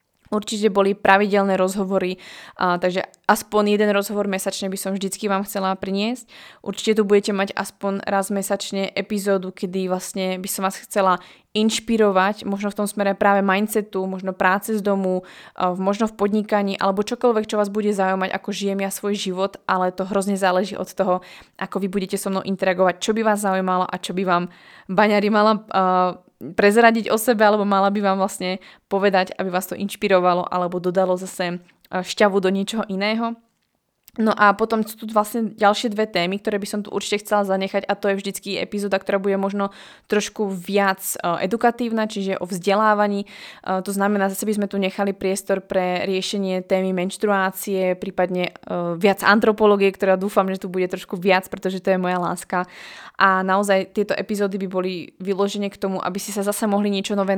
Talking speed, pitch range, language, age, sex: 180 wpm, 190-205 Hz, Slovak, 20-39, female